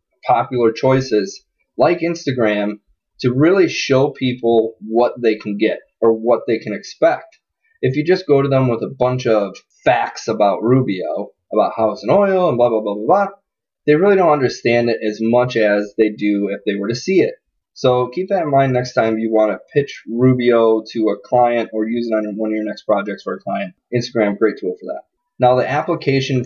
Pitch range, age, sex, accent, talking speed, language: 110-135 Hz, 20-39, male, American, 205 wpm, English